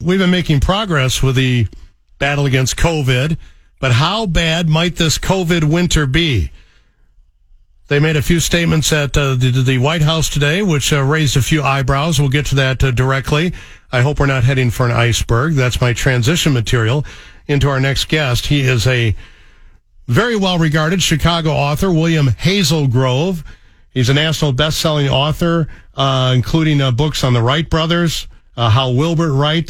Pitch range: 125-165 Hz